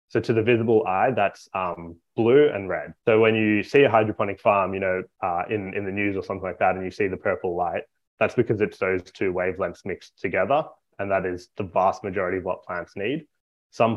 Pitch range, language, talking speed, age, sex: 90-110 Hz, English, 230 wpm, 20-39, male